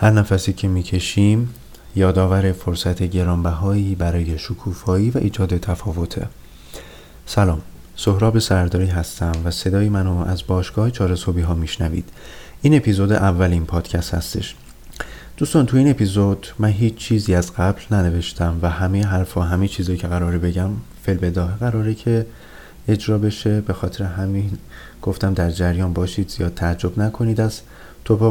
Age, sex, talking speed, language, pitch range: 30-49, male, 145 wpm, Persian, 90-110 Hz